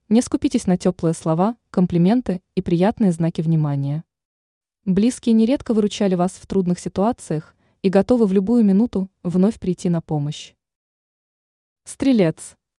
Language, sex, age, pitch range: Russian, female, 20-39, 170-220 Hz